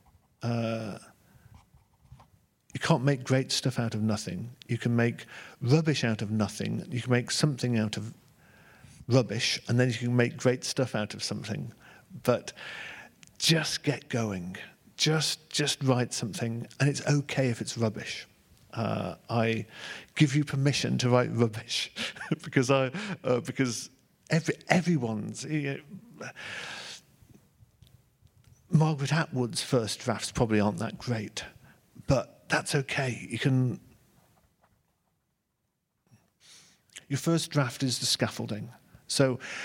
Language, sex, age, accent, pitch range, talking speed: French, male, 50-69, British, 115-140 Hz, 125 wpm